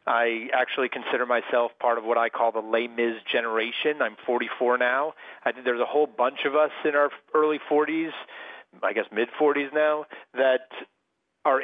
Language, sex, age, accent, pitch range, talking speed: English, male, 40-59, American, 115-155 Hz, 175 wpm